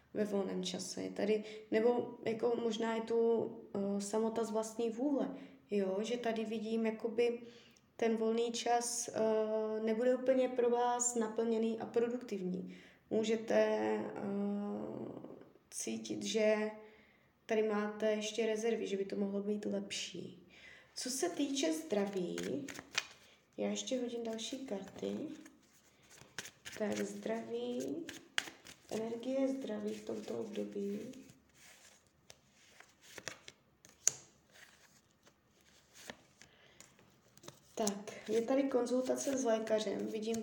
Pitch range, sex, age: 205-240 Hz, female, 20-39